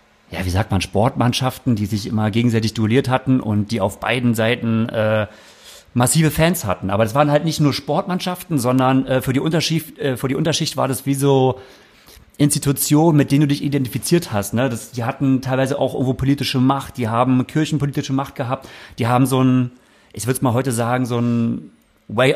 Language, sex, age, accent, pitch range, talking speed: German, male, 40-59, German, 120-145 Hz, 200 wpm